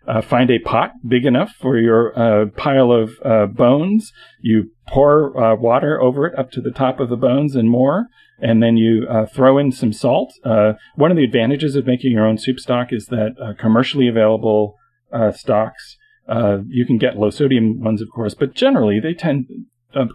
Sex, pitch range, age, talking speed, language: male, 110-130 Hz, 40-59, 205 wpm, English